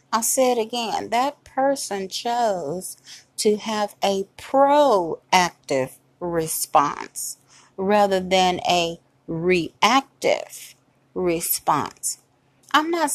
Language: English